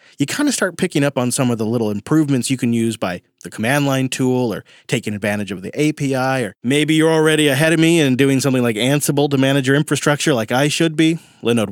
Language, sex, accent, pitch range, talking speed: English, male, American, 115-155 Hz, 240 wpm